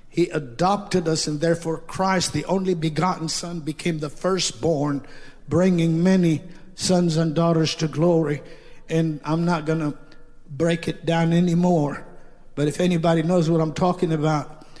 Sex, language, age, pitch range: male, English, 60-79, 155-180 Hz